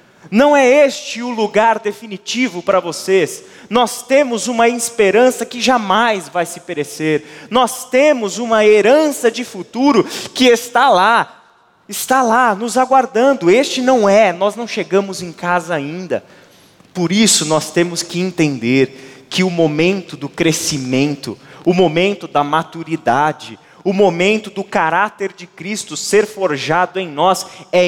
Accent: Brazilian